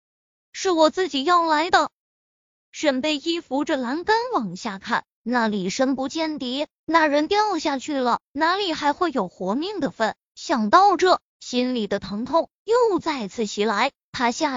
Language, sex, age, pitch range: Chinese, female, 20-39, 230-330 Hz